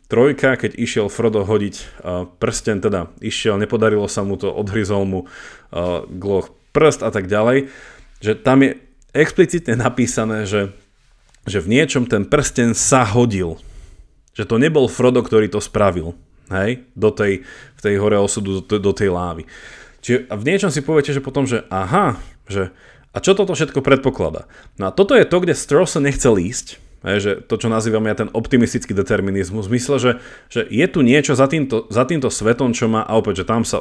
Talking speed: 175 wpm